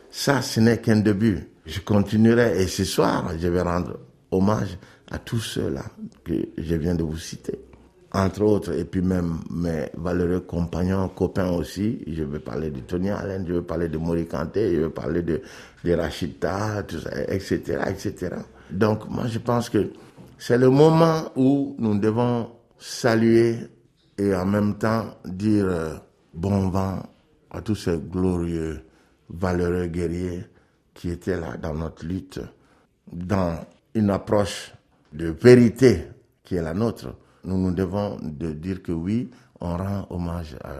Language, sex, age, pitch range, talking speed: French, male, 60-79, 85-105 Hz, 155 wpm